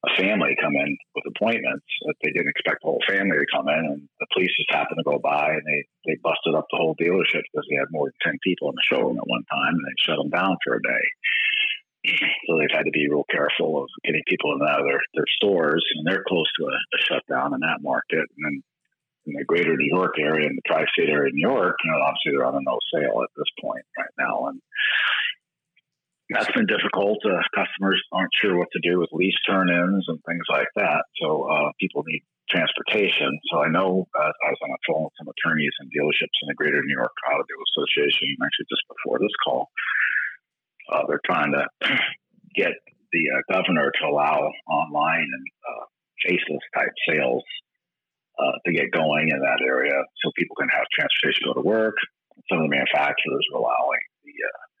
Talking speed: 210 wpm